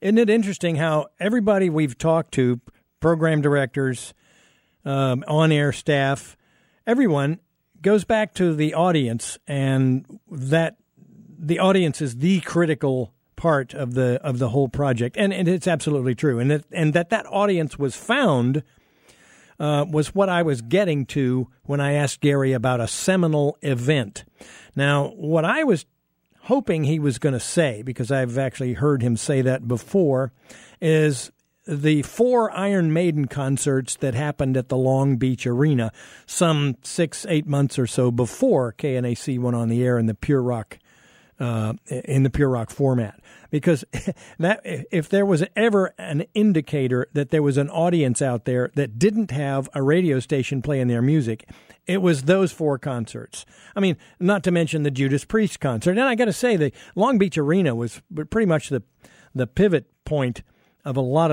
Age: 50-69